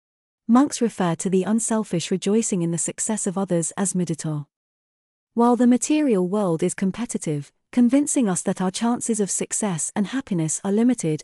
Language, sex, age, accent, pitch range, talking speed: English, female, 30-49, British, 175-225 Hz, 160 wpm